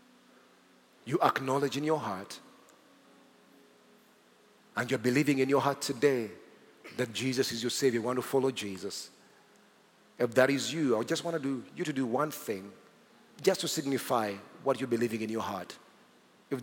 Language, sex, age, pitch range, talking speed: English, male, 40-59, 120-140 Hz, 165 wpm